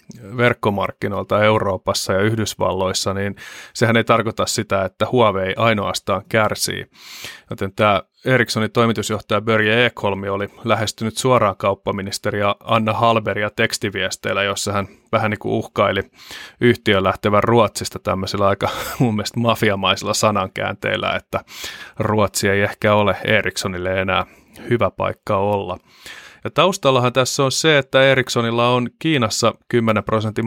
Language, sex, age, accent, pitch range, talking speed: Finnish, male, 30-49, native, 100-120 Hz, 120 wpm